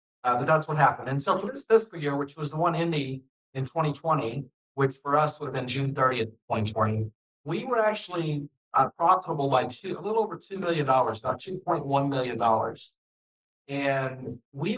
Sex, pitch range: male, 130-155 Hz